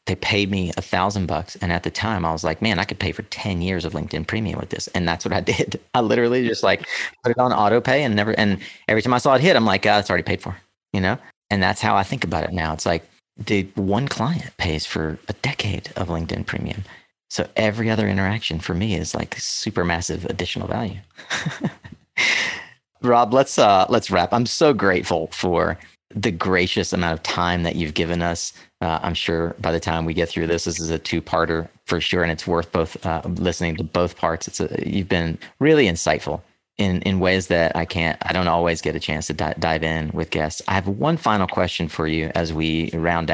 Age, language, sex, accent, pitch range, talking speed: 30-49, English, male, American, 80-105 Hz, 230 wpm